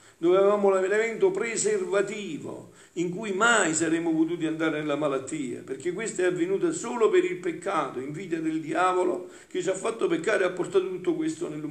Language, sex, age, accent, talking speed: Italian, male, 50-69, native, 180 wpm